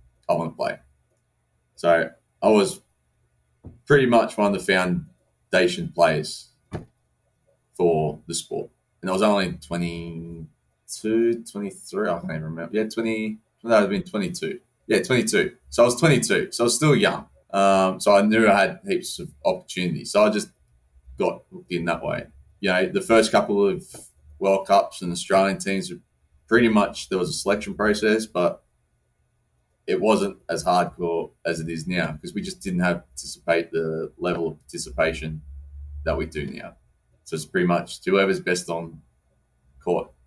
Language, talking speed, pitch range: English, 165 wpm, 80-105 Hz